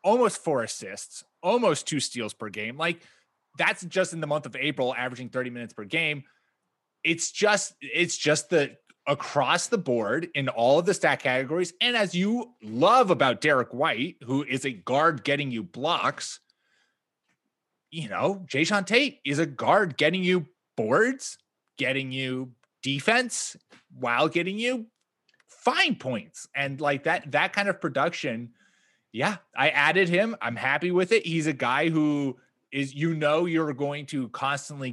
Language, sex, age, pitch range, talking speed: English, male, 30-49, 130-180 Hz, 160 wpm